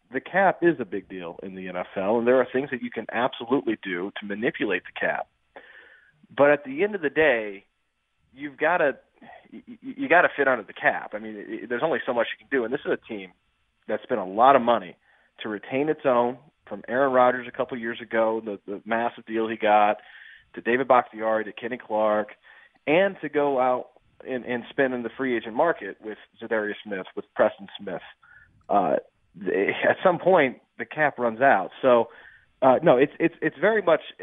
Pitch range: 110-135 Hz